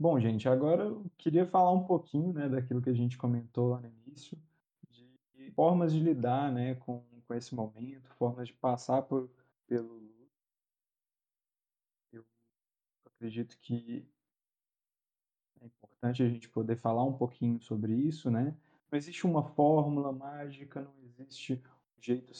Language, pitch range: Portuguese, 120-145 Hz